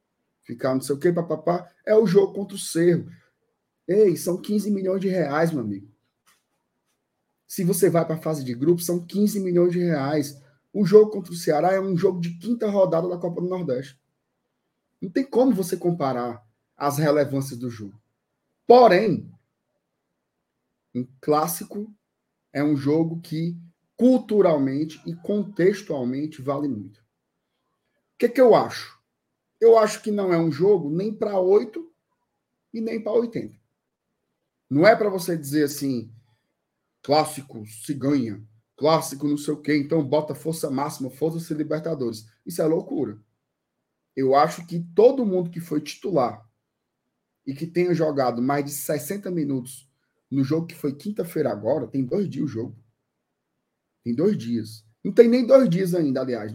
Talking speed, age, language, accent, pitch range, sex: 160 wpm, 20-39, Portuguese, Brazilian, 135-190 Hz, male